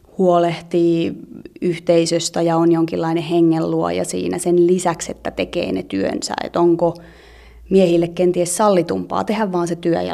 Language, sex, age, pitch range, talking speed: Finnish, female, 30-49, 165-180 Hz, 135 wpm